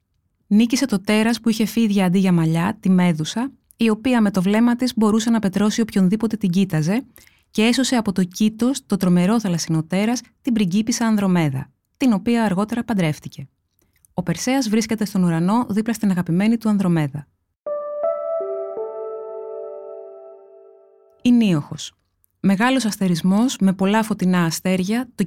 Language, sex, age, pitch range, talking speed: Greek, female, 20-39, 175-230 Hz, 135 wpm